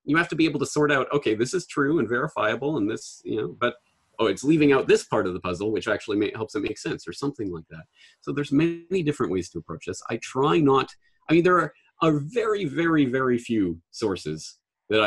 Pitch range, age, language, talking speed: 95-155 Hz, 30-49, English, 245 wpm